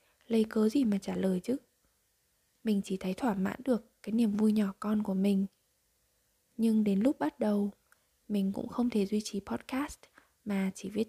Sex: female